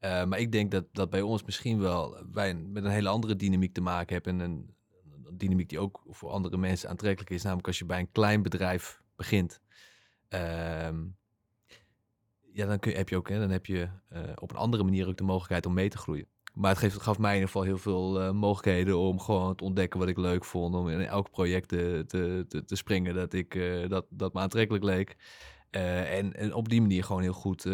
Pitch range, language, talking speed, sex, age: 90-100 Hz, Dutch, 235 wpm, male, 20-39